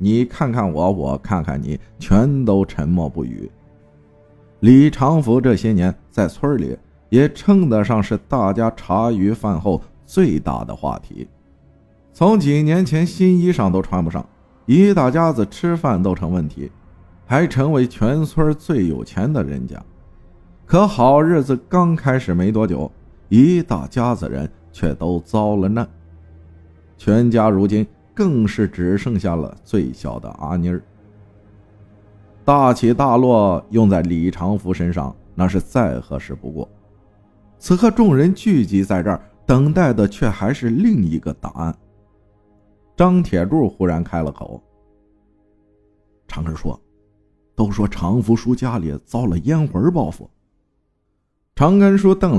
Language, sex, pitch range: Chinese, male, 90-125 Hz